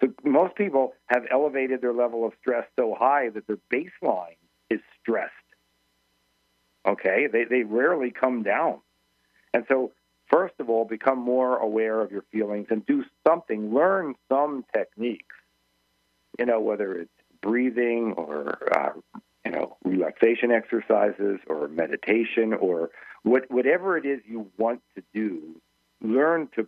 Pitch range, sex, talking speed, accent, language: 105-130 Hz, male, 140 wpm, American, English